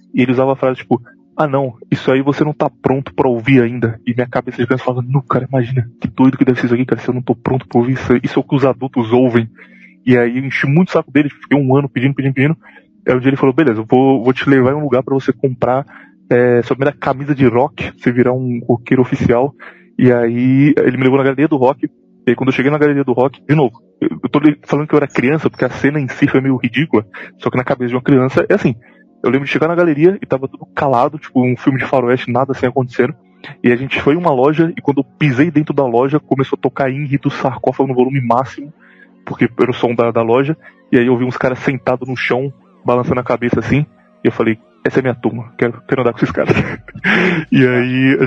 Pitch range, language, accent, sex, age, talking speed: 125-140 Hz, Portuguese, Brazilian, male, 20-39, 265 wpm